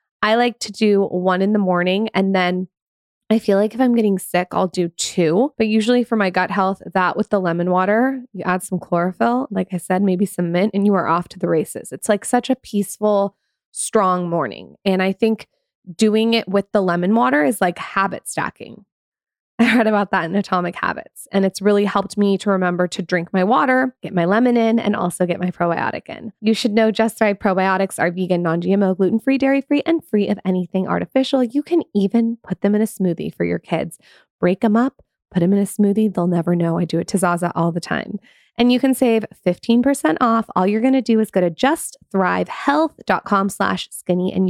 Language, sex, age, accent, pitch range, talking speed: English, female, 20-39, American, 180-225 Hz, 215 wpm